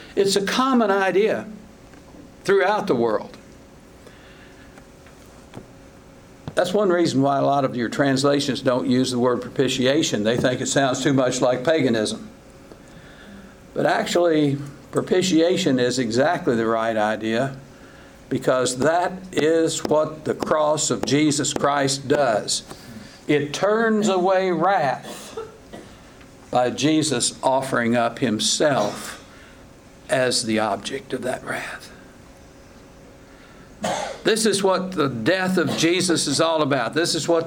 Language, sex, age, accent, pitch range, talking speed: English, male, 60-79, American, 125-170 Hz, 120 wpm